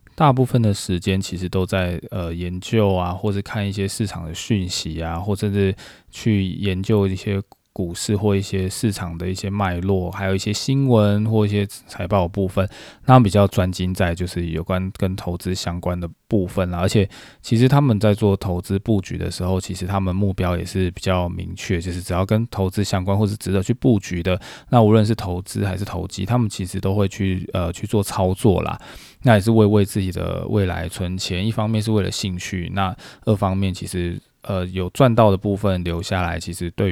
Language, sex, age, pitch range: Chinese, male, 20-39, 90-105 Hz